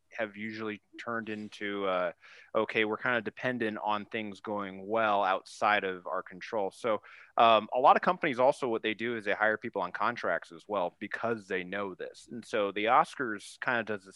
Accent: American